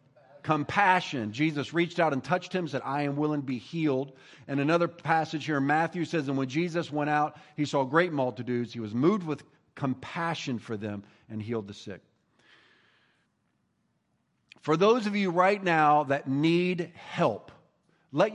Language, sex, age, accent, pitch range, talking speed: English, male, 50-69, American, 150-215 Hz, 165 wpm